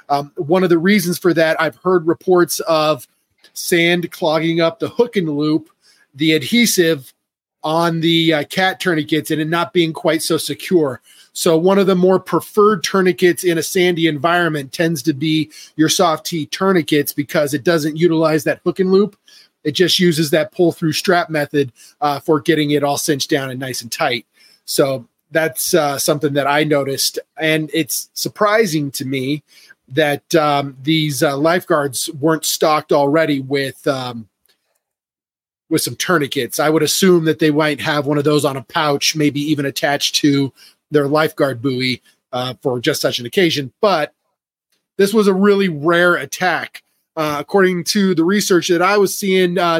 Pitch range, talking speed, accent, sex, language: 150-180 Hz, 175 wpm, American, male, English